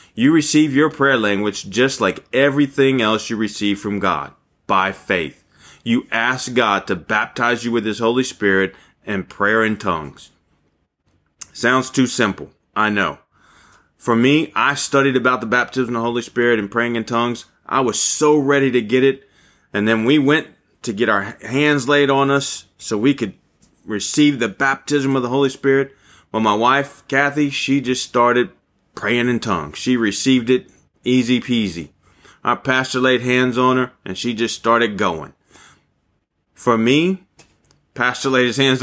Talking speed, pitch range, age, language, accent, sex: 170 wpm, 100-135 Hz, 30-49, English, American, male